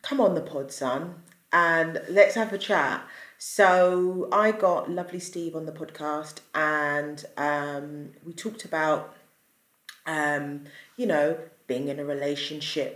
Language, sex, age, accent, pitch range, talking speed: English, female, 30-49, British, 145-180 Hz, 140 wpm